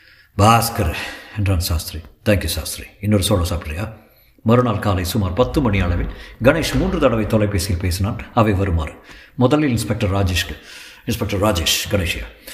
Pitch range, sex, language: 85-110 Hz, male, Tamil